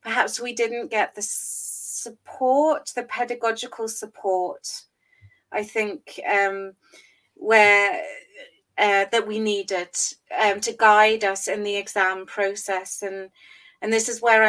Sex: female